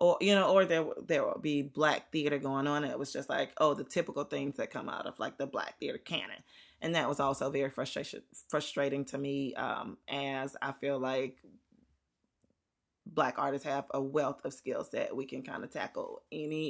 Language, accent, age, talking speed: English, American, 20-39, 210 wpm